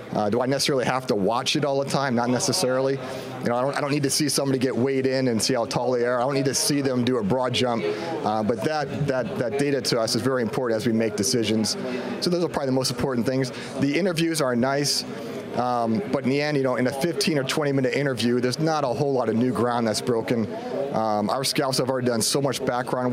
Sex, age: male, 30-49